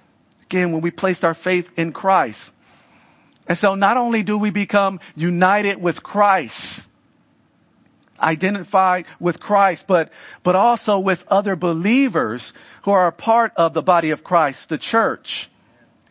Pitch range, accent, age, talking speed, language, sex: 175-205 Hz, American, 50-69, 140 wpm, English, male